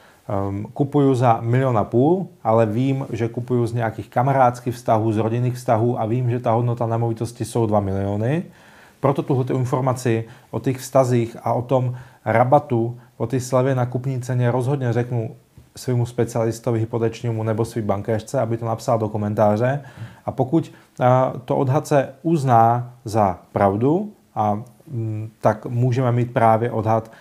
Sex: male